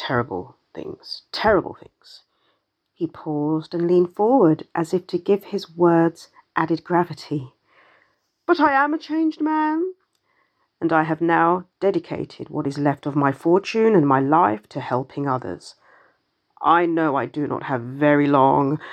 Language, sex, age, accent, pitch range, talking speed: English, female, 40-59, British, 160-220 Hz, 150 wpm